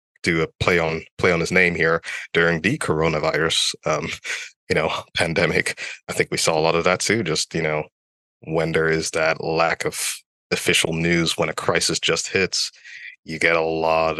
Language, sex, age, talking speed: English, male, 20-39, 190 wpm